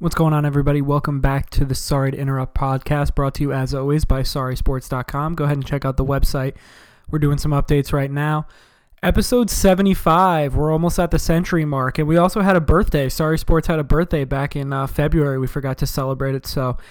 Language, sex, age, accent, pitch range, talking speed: English, male, 20-39, American, 145-165 Hz, 215 wpm